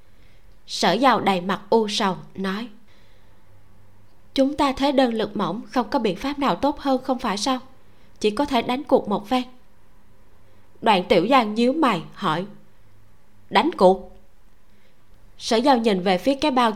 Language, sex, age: Vietnamese, female, 20-39